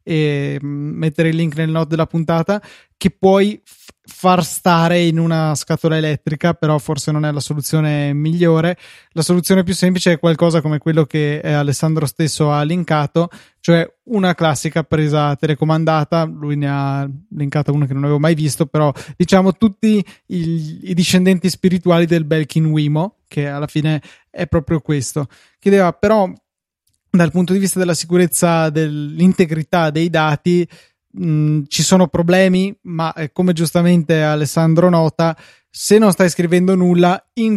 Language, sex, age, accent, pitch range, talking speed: Italian, male, 20-39, native, 155-180 Hz, 150 wpm